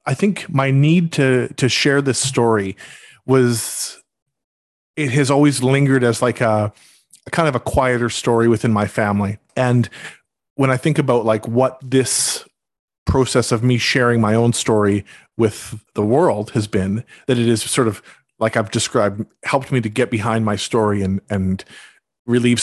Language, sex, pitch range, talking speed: English, male, 110-135 Hz, 170 wpm